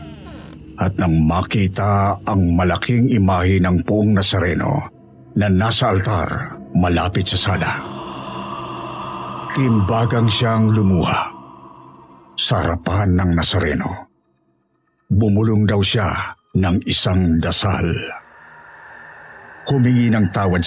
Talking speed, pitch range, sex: 90 wpm, 85-110 Hz, male